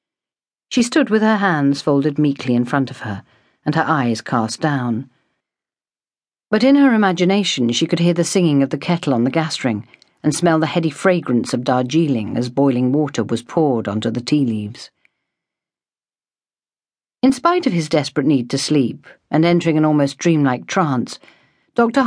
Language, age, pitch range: English, 50-69, 130-175 Hz